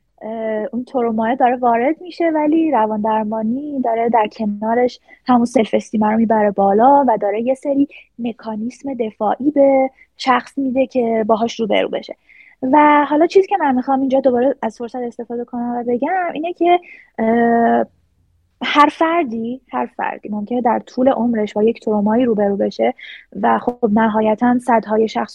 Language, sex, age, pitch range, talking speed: Persian, female, 20-39, 215-265 Hz, 150 wpm